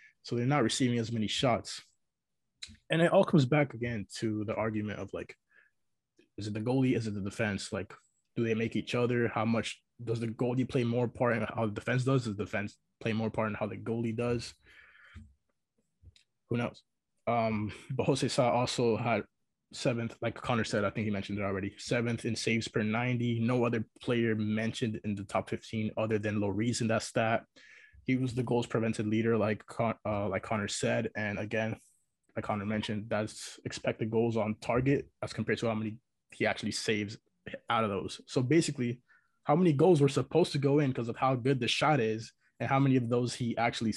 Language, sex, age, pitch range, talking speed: English, male, 20-39, 110-125 Hz, 205 wpm